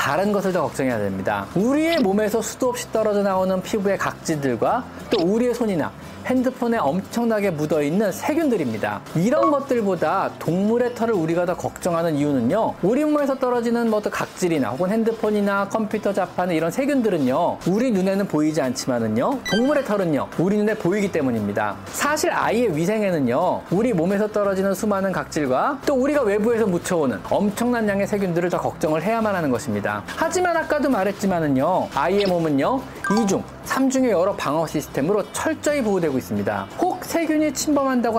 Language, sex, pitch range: Korean, male, 170-245 Hz